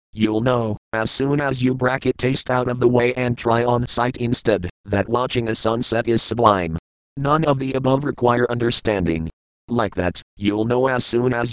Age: 40-59